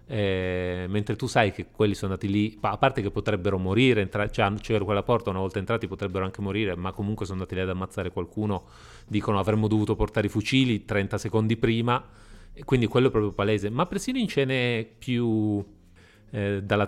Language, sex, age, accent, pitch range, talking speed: Italian, male, 30-49, native, 100-120 Hz, 195 wpm